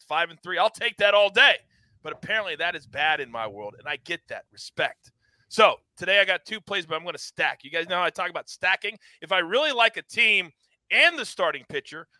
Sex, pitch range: male, 165-260 Hz